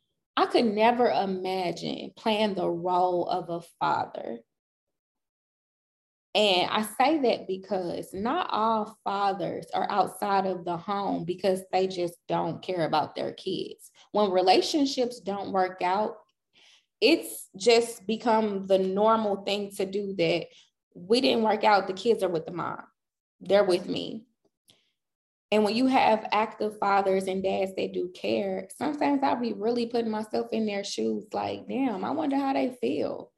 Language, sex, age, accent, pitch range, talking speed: English, female, 20-39, American, 190-235 Hz, 155 wpm